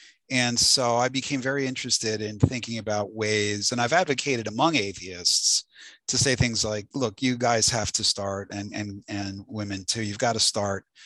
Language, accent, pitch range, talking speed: English, American, 100-125 Hz, 185 wpm